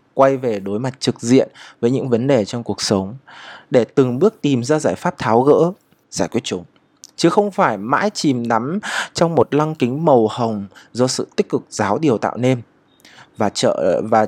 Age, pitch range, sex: 20-39, 115-155 Hz, male